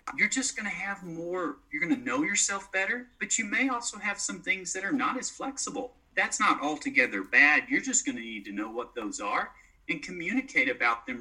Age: 40-59